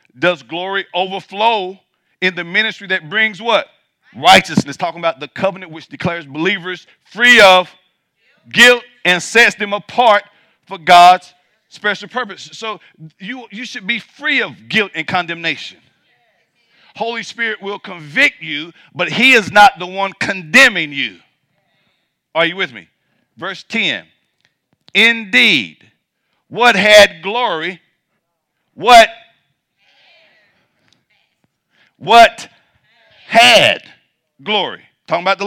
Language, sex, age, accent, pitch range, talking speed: English, male, 50-69, American, 175-230 Hz, 115 wpm